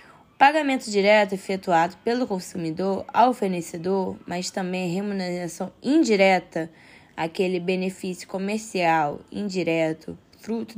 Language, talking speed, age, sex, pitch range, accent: Portuguese, 90 wpm, 10-29, female, 180-255 Hz, Brazilian